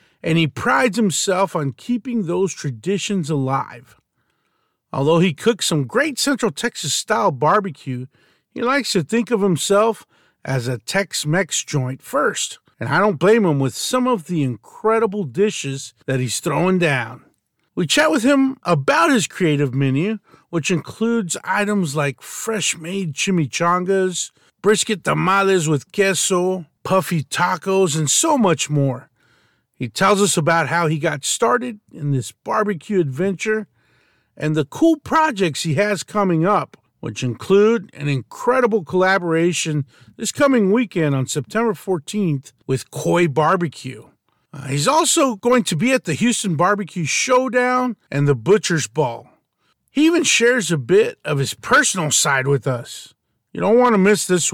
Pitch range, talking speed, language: 145-215 Hz, 145 wpm, English